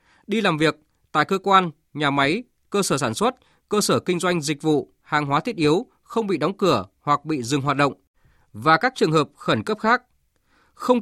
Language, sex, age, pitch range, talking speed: Vietnamese, male, 20-39, 155-210 Hz, 210 wpm